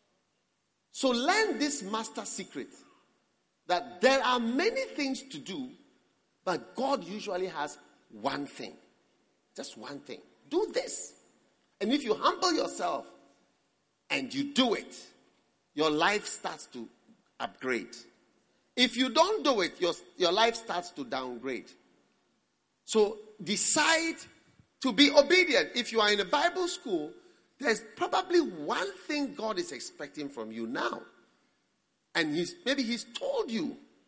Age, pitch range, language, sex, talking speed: 50-69, 220-325 Hz, English, male, 135 wpm